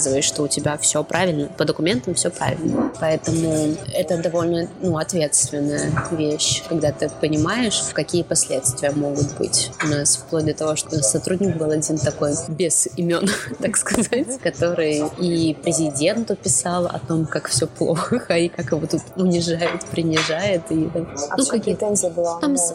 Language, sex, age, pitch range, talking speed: Russian, female, 20-39, 155-175 Hz, 145 wpm